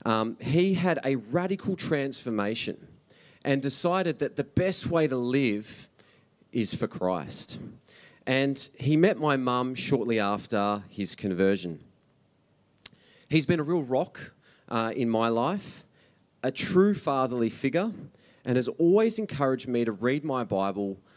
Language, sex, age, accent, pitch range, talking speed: English, male, 30-49, Australian, 110-160 Hz, 135 wpm